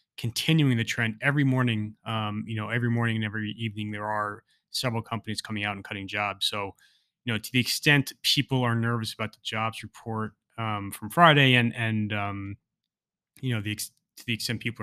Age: 20-39